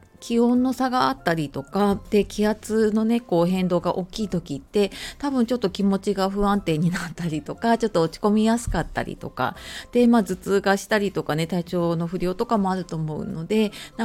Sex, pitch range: female, 165-220 Hz